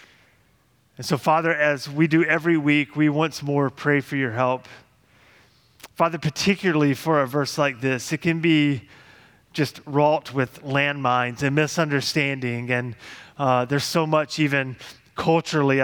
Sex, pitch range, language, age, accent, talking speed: male, 140-160 Hz, English, 30-49, American, 145 wpm